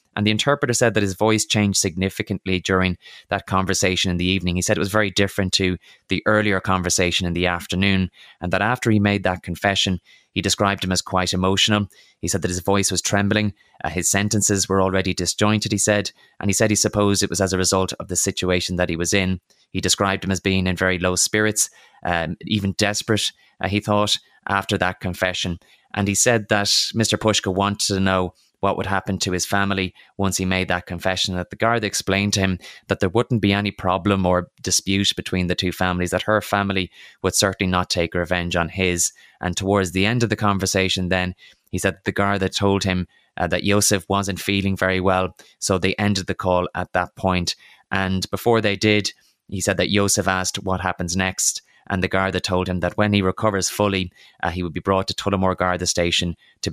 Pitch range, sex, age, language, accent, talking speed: 90-100 Hz, male, 20-39, English, Irish, 215 wpm